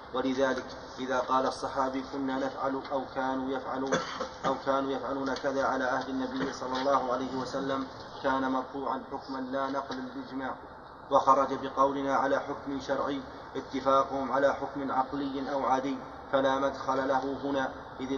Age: 30-49